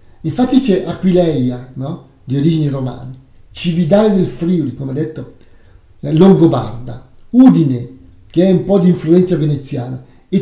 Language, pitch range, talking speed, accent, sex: Italian, 130-185 Hz, 130 wpm, native, male